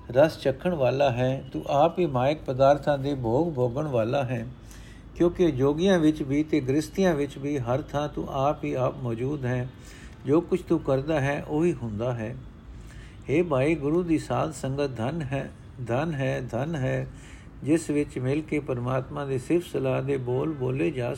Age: 50-69